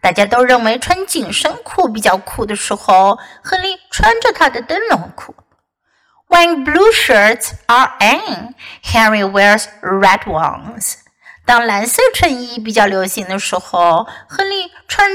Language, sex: Chinese, female